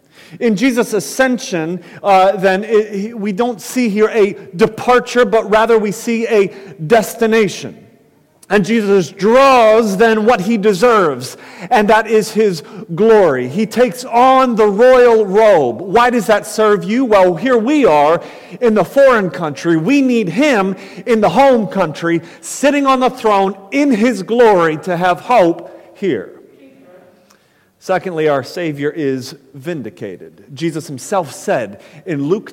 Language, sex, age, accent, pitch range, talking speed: English, male, 40-59, American, 180-235 Hz, 140 wpm